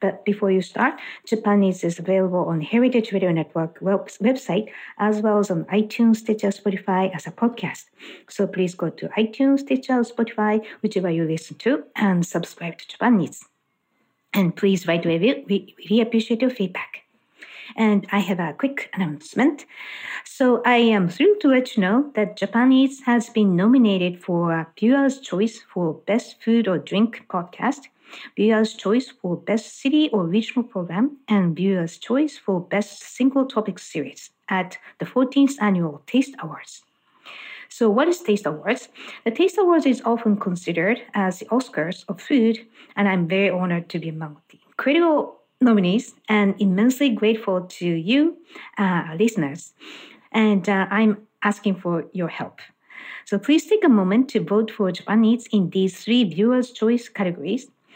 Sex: female